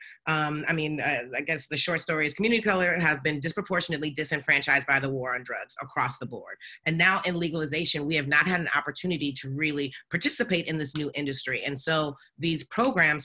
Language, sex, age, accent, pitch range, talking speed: English, female, 30-49, American, 140-160 Hz, 205 wpm